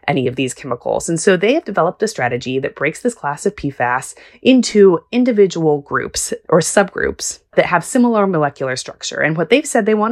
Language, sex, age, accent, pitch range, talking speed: English, female, 20-39, American, 145-220 Hz, 195 wpm